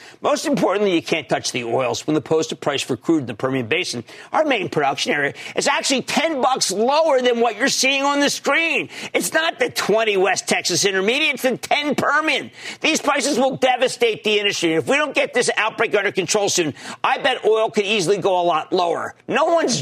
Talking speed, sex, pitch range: 210 wpm, male, 195-290 Hz